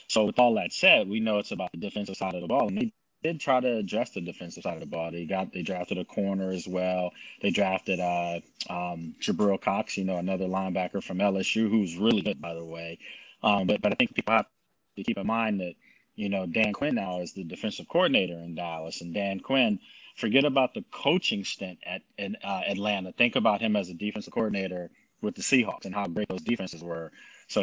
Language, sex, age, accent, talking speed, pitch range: English, male, 30-49, American, 230 wpm, 95-110 Hz